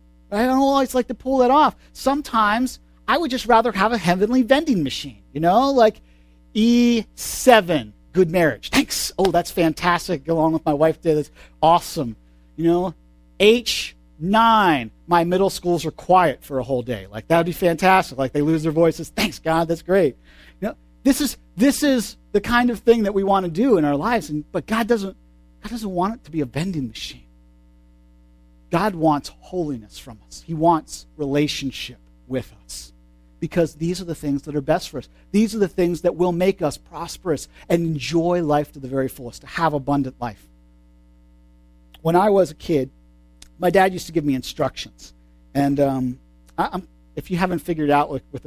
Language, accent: English, American